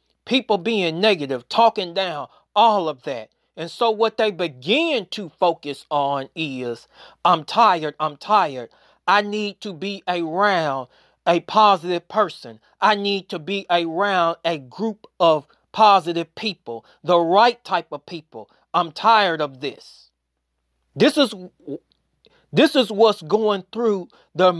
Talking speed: 135 wpm